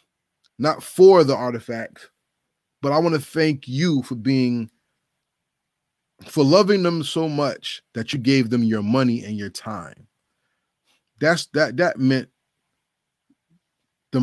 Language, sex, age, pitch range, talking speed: English, male, 20-39, 115-150 Hz, 130 wpm